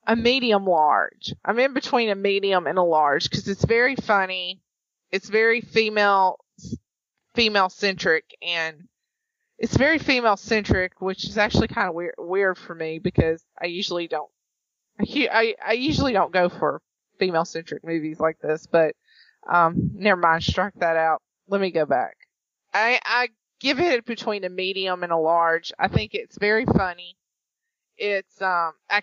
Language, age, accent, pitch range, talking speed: English, 30-49, American, 175-215 Hz, 160 wpm